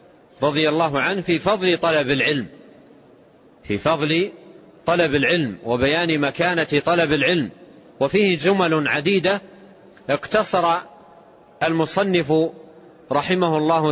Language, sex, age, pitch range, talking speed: Arabic, male, 40-59, 150-190 Hz, 95 wpm